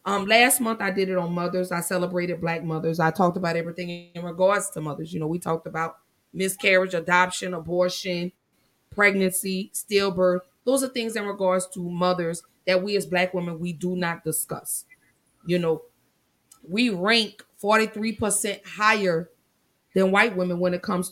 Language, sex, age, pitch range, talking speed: English, female, 30-49, 165-190 Hz, 165 wpm